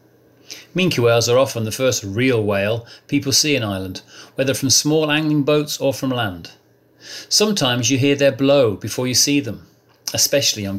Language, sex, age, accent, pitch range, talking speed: English, male, 40-59, British, 115-145 Hz, 170 wpm